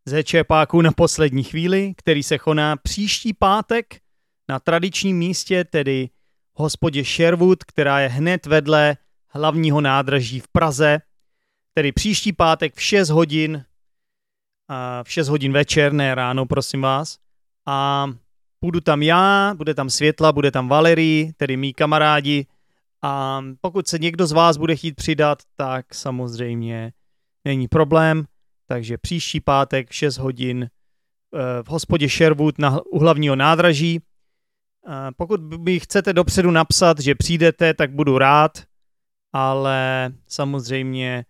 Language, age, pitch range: Czech, 30-49, 135-165 Hz